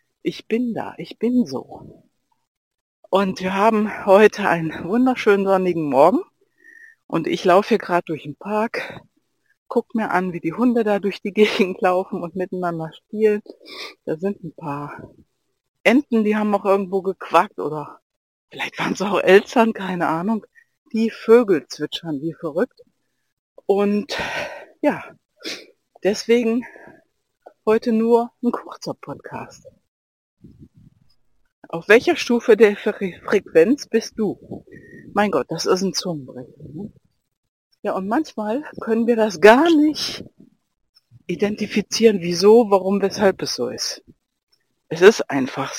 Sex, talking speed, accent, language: female, 130 wpm, German, German